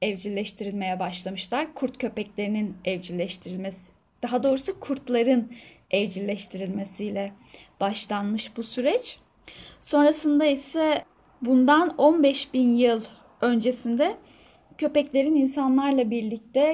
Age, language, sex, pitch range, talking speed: 10-29, Turkish, female, 215-285 Hz, 80 wpm